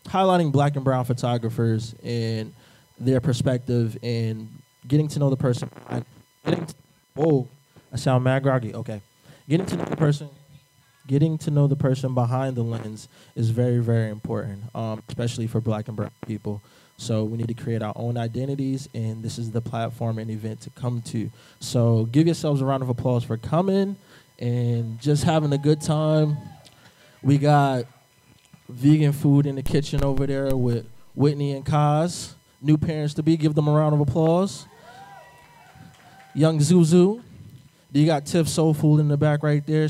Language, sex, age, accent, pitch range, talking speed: English, male, 20-39, American, 125-155 Hz, 170 wpm